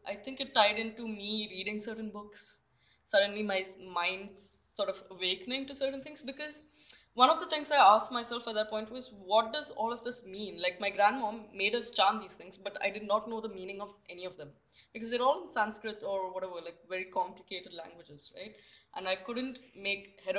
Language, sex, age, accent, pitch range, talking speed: English, female, 20-39, Indian, 180-215 Hz, 210 wpm